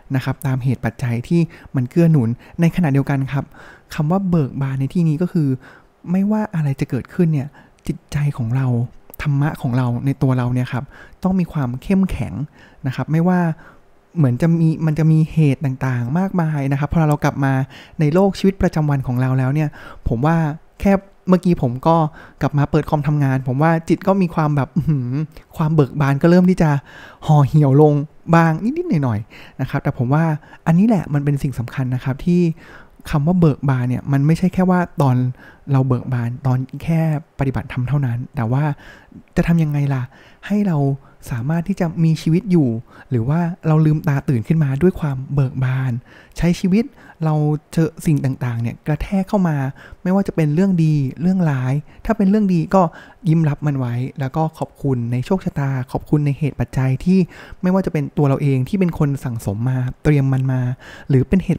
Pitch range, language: 130-165 Hz, Thai